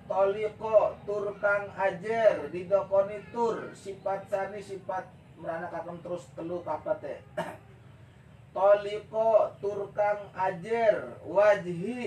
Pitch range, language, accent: 140-210 Hz, Indonesian, native